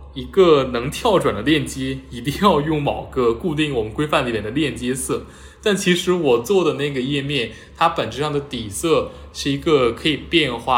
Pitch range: 120-155 Hz